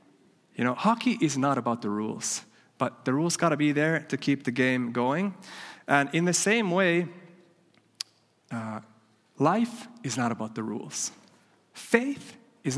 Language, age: English, 30-49